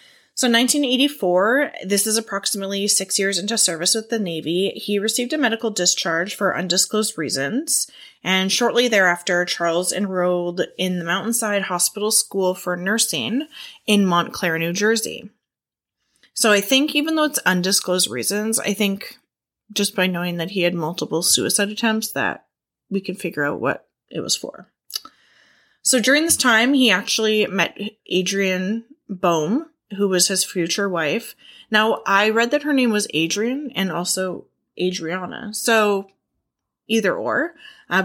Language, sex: English, female